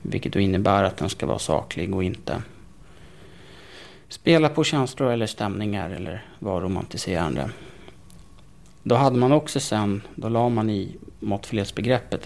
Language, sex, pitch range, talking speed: Swedish, male, 100-120 Hz, 135 wpm